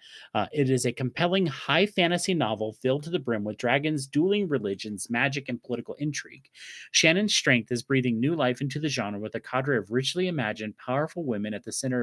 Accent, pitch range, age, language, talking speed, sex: American, 115-150 Hz, 30-49, English, 200 wpm, male